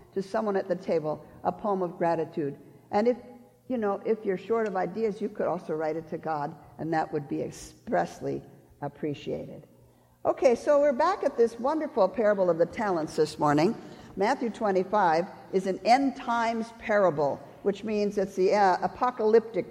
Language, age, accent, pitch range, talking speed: English, 50-69, American, 170-230 Hz, 175 wpm